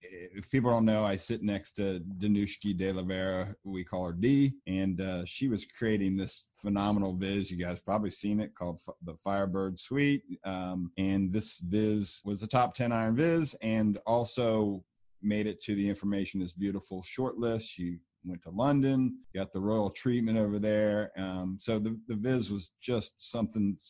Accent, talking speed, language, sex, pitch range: American, 185 wpm, English, male, 95-115 Hz